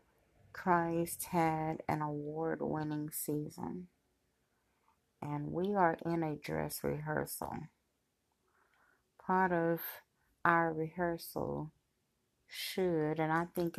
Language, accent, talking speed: English, American, 85 wpm